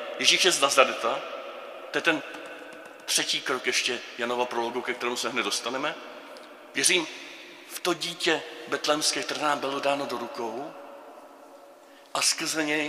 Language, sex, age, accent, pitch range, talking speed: Czech, male, 40-59, native, 140-160 Hz, 145 wpm